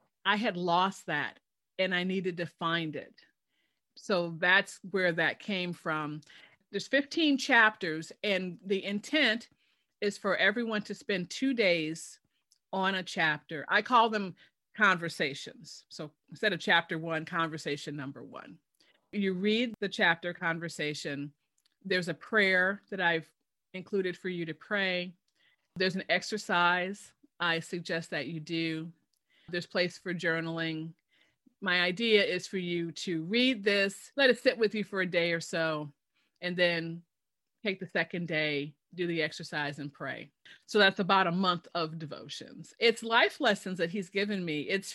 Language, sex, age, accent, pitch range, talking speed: English, female, 40-59, American, 165-200 Hz, 155 wpm